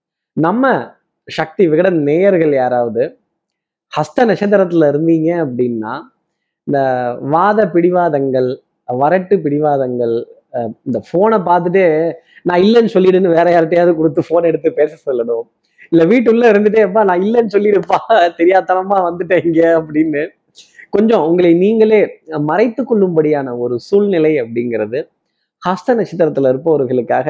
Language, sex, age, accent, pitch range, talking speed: Tamil, male, 20-39, native, 145-200 Hz, 100 wpm